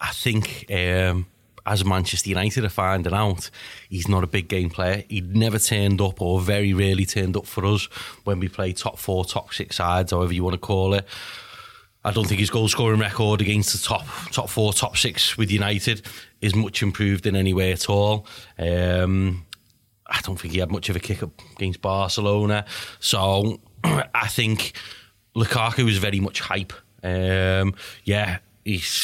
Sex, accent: male, British